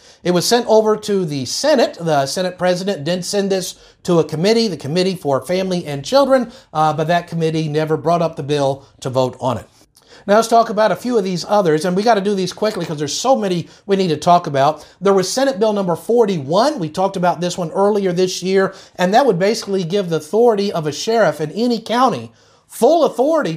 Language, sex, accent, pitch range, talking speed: English, male, American, 160-215 Hz, 225 wpm